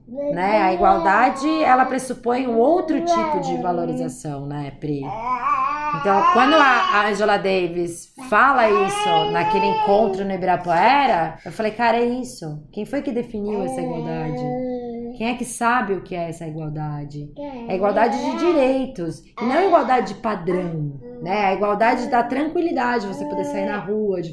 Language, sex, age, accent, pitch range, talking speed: Portuguese, female, 20-39, Brazilian, 170-240 Hz, 165 wpm